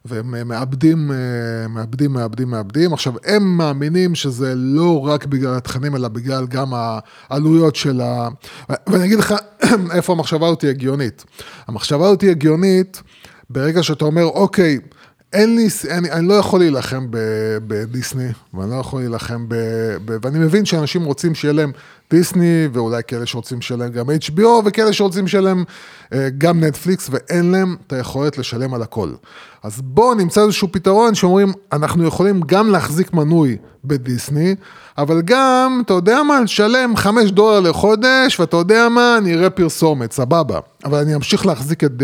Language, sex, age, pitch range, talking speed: Hebrew, male, 20-39, 130-185 Hz, 150 wpm